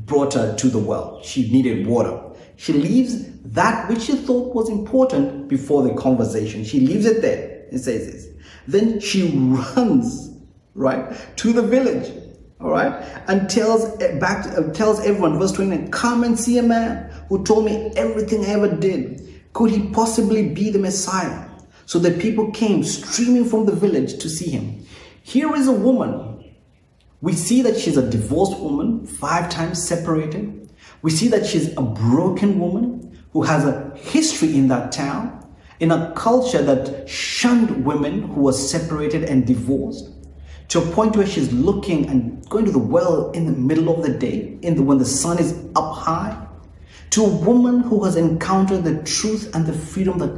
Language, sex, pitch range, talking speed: English, male, 145-225 Hz, 175 wpm